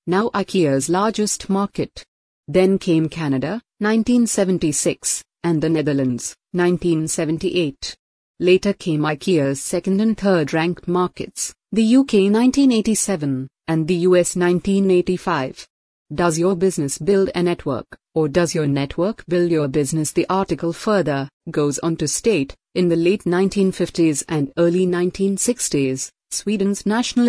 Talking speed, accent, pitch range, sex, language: 125 wpm, Indian, 160-195 Hz, female, English